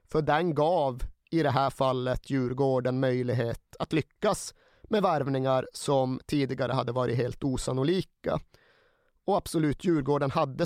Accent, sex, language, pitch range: native, male, Swedish, 130-165 Hz